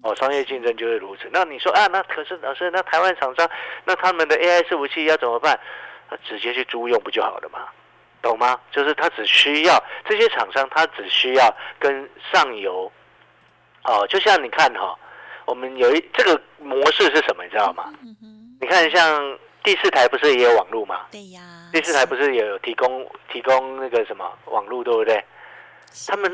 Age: 50-69